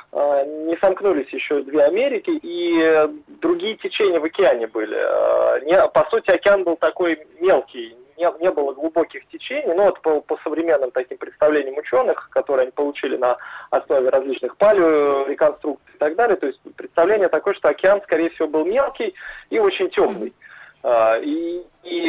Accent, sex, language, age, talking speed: native, male, Russian, 20-39, 145 wpm